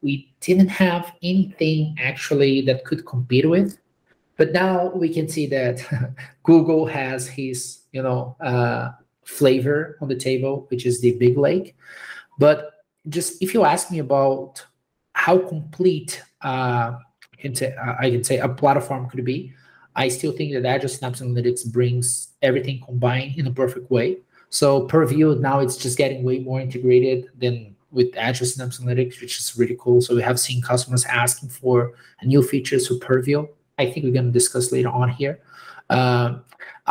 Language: English